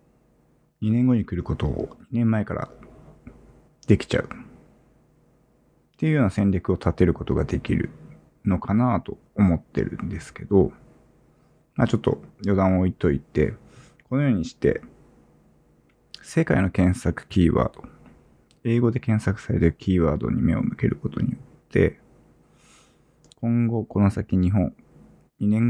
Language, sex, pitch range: Japanese, male, 90-115 Hz